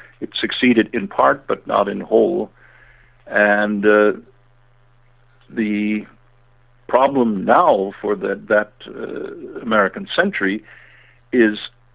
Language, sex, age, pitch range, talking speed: English, male, 60-79, 95-120 Hz, 105 wpm